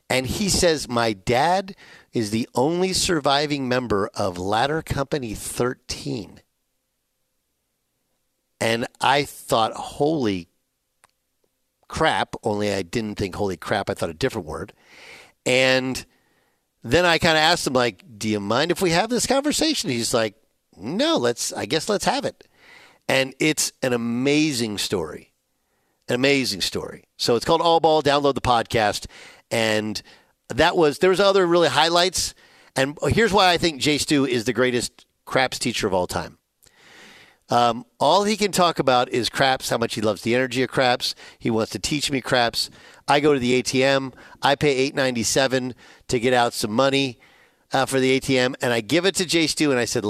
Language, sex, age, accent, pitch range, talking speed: English, male, 50-69, American, 120-155 Hz, 170 wpm